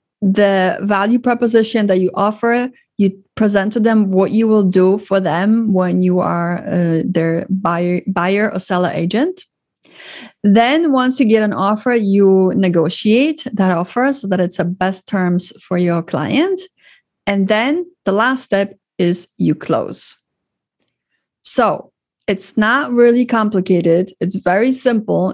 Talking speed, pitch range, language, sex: 145 wpm, 185-230 Hz, English, female